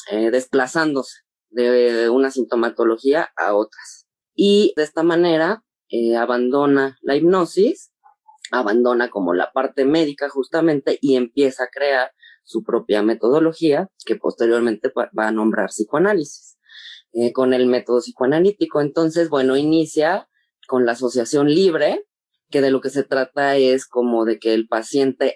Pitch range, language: 120-160 Hz, Spanish